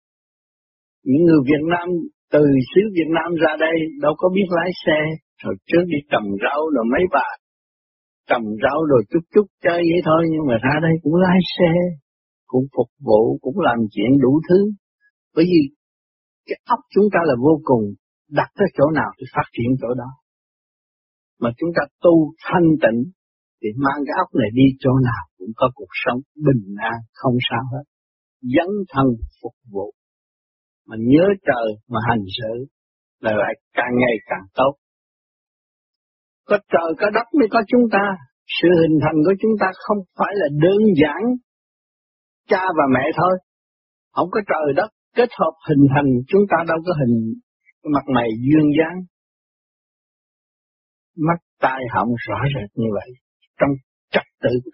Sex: male